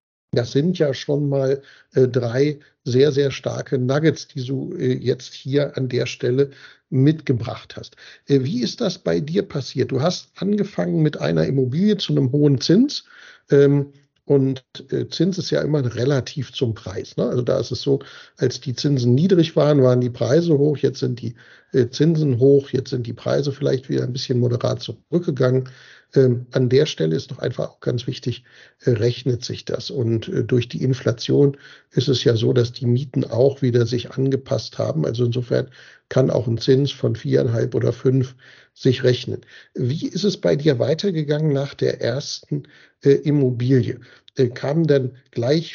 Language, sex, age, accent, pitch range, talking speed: German, male, 60-79, German, 125-145 Hz, 180 wpm